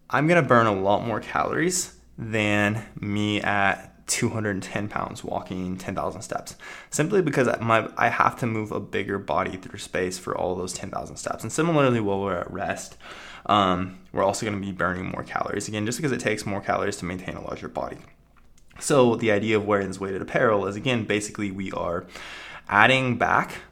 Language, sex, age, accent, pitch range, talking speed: English, male, 20-39, American, 95-120 Hz, 180 wpm